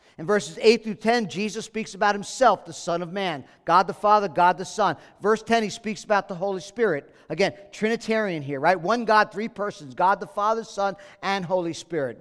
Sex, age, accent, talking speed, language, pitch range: male, 50-69, American, 205 wpm, English, 150-210 Hz